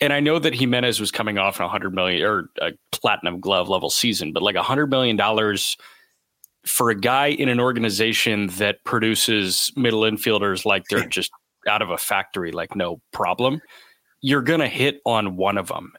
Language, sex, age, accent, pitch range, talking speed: English, male, 30-49, American, 110-135 Hz, 190 wpm